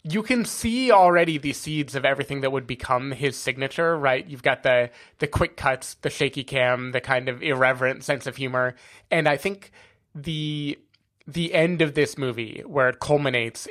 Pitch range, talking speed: 125-145 Hz, 185 wpm